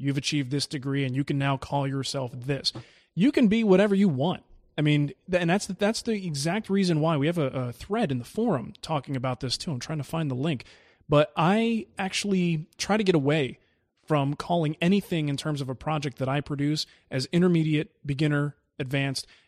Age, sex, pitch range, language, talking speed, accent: 30-49, male, 140-175 Hz, English, 205 wpm, American